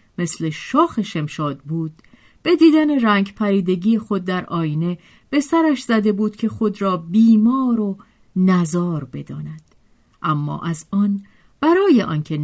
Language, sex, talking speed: Persian, female, 130 wpm